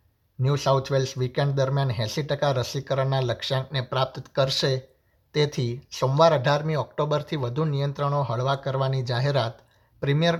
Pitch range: 125-155 Hz